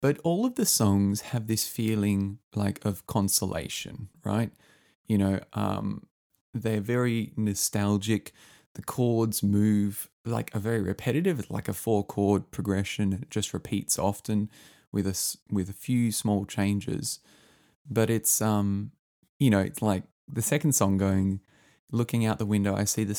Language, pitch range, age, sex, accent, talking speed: English, 95-115 Hz, 20-39, male, Australian, 150 wpm